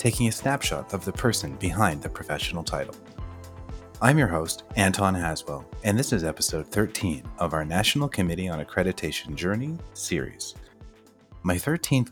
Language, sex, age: English, male, 30-49